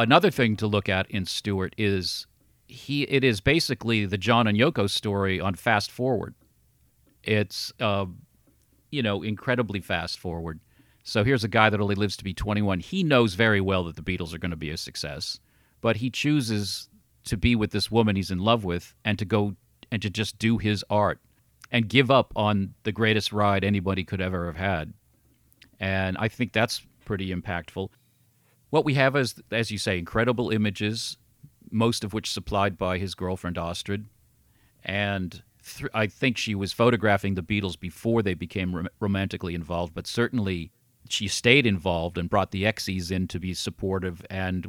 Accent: American